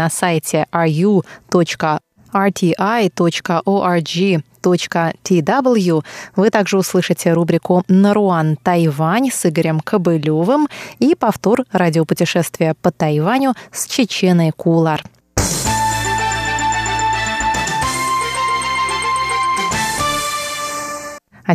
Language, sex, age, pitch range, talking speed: Russian, female, 20-39, 170-235 Hz, 60 wpm